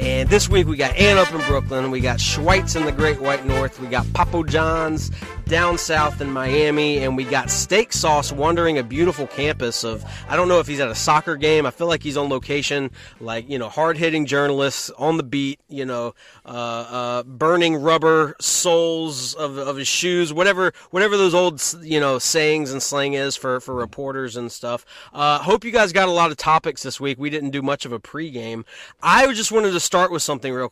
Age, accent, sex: 30-49, American, male